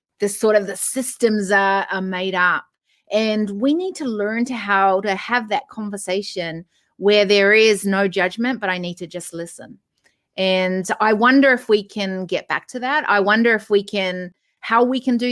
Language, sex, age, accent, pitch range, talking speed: English, female, 30-49, Australian, 195-230 Hz, 195 wpm